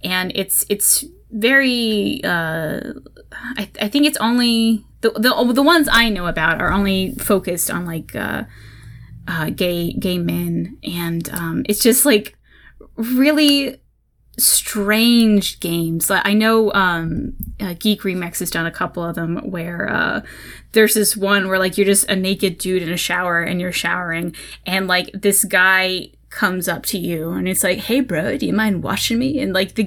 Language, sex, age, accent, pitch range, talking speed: English, female, 10-29, American, 180-225 Hz, 175 wpm